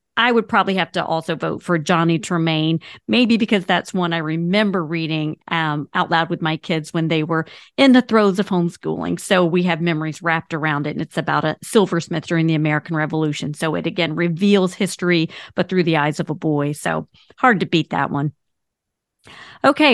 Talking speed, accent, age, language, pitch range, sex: 200 wpm, American, 40-59, English, 170-215 Hz, female